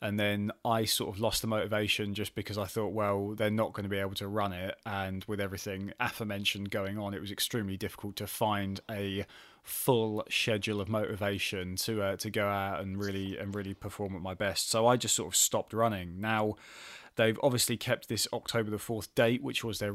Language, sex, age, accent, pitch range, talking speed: English, male, 20-39, British, 100-115 Hz, 215 wpm